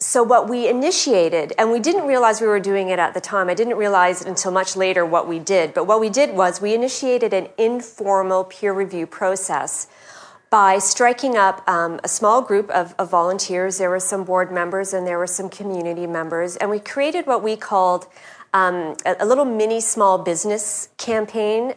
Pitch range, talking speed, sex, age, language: 180-225 Hz, 200 wpm, female, 40-59, English